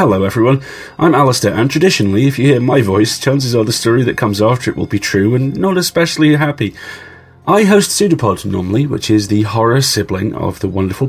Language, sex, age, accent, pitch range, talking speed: English, male, 30-49, British, 100-130 Hz, 205 wpm